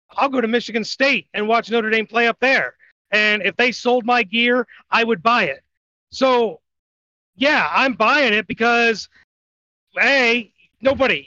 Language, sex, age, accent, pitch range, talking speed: English, male, 30-49, American, 185-235 Hz, 160 wpm